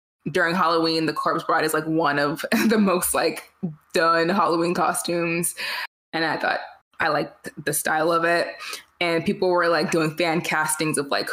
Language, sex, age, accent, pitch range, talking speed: English, female, 20-39, American, 155-190 Hz, 175 wpm